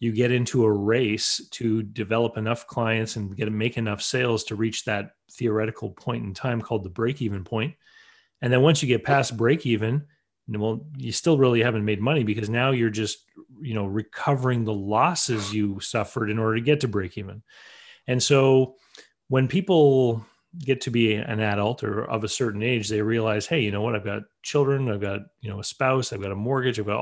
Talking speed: 215 wpm